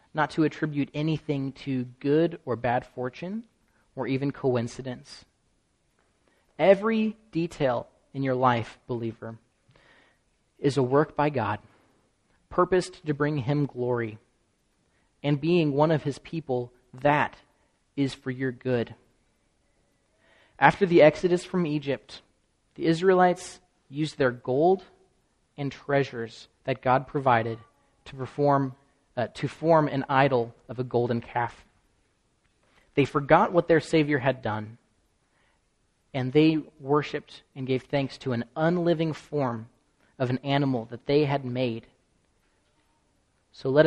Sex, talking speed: male, 125 wpm